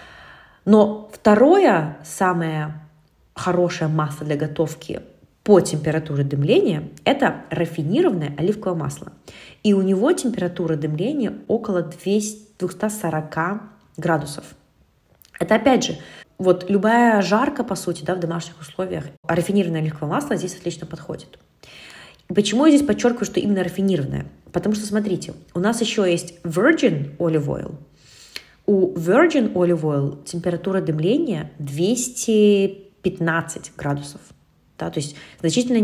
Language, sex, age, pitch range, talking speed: Russian, female, 20-39, 160-205 Hz, 115 wpm